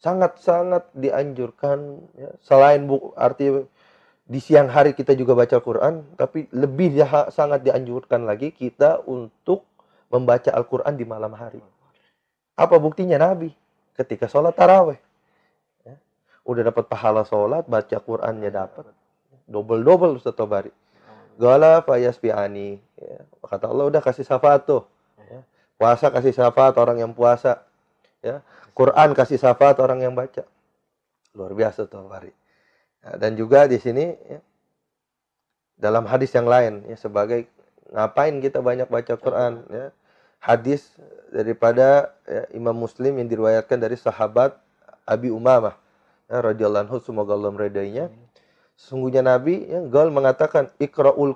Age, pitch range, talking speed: 30-49, 115-140 Hz, 125 wpm